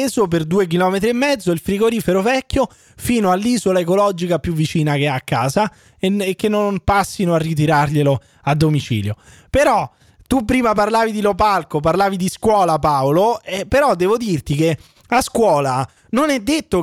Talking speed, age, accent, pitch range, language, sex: 170 wpm, 20-39, native, 150-210 Hz, Italian, male